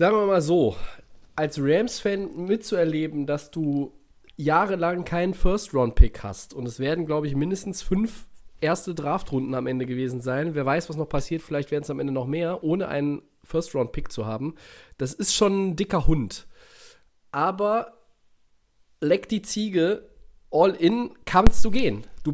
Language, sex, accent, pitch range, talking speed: German, male, German, 130-195 Hz, 160 wpm